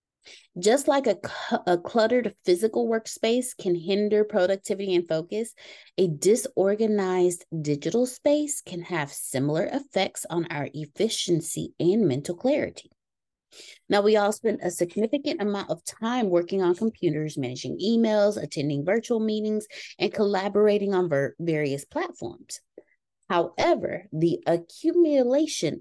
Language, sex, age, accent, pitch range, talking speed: English, female, 30-49, American, 160-230 Hz, 120 wpm